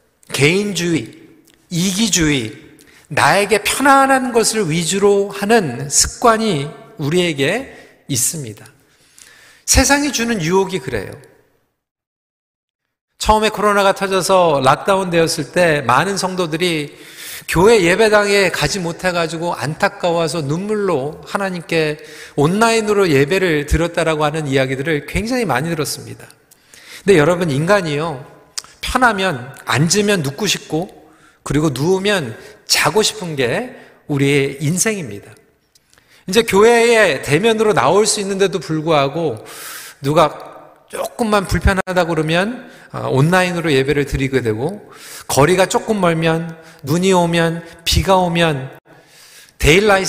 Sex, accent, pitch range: male, native, 150-205 Hz